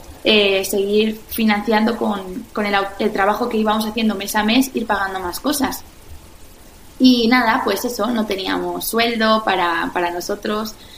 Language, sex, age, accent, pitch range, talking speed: Spanish, female, 20-39, Spanish, 200-240 Hz, 155 wpm